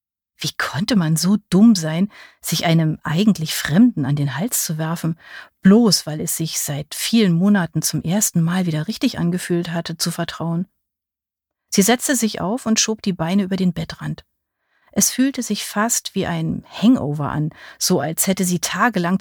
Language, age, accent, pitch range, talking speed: German, 40-59, German, 160-205 Hz, 170 wpm